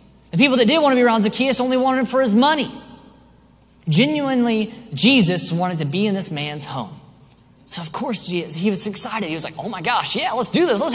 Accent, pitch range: American, 140-220 Hz